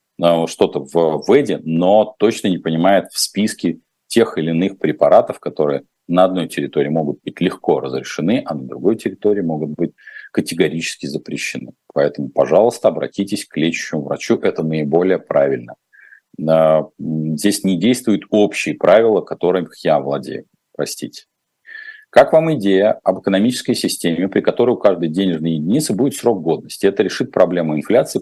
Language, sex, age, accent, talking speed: Russian, male, 40-59, native, 140 wpm